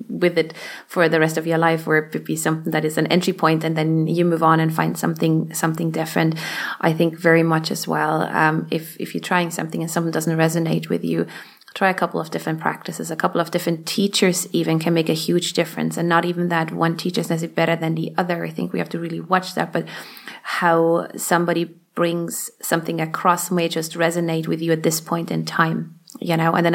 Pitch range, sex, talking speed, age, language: 160-180 Hz, female, 230 wpm, 30-49, English